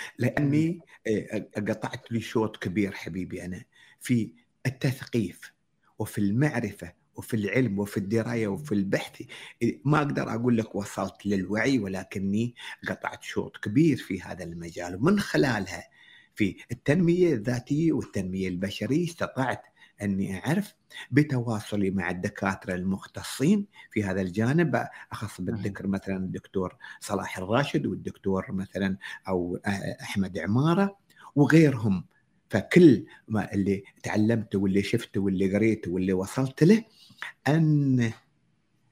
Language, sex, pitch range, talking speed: Arabic, male, 95-130 Hz, 110 wpm